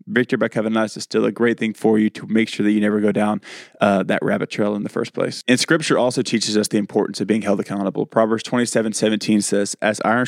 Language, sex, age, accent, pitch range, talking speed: English, male, 20-39, American, 105-125 Hz, 250 wpm